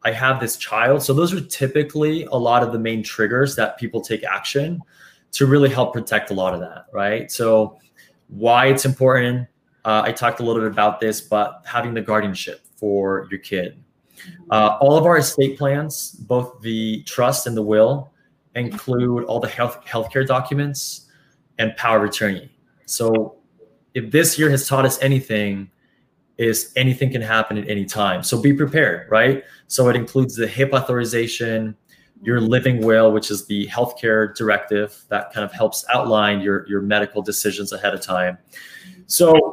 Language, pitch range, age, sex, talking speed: English, 110-135 Hz, 20-39, male, 175 wpm